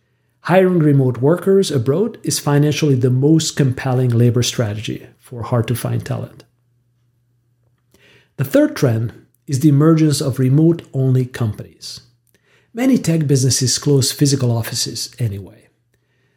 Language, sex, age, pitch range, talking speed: English, male, 50-69, 120-150 Hz, 110 wpm